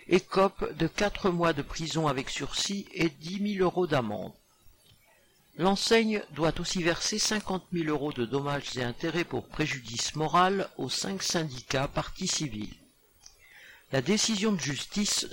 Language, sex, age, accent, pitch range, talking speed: French, male, 50-69, French, 140-185 Hz, 140 wpm